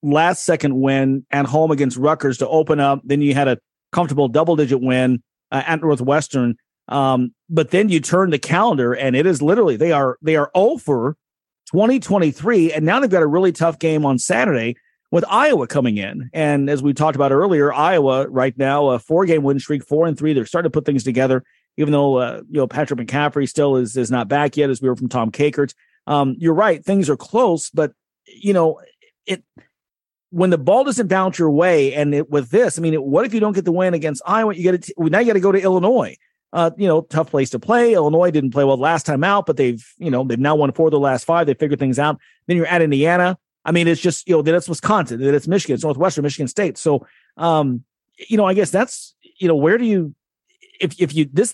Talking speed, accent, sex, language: 235 wpm, American, male, English